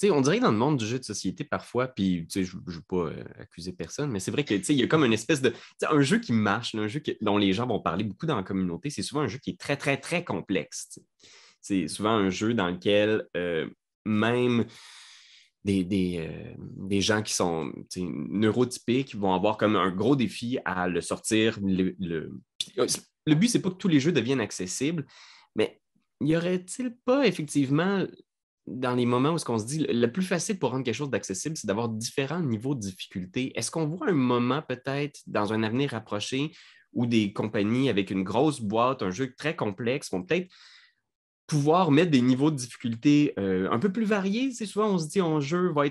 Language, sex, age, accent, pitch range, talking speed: French, male, 20-39, Canadian, 95-145 Hz, 235 wpm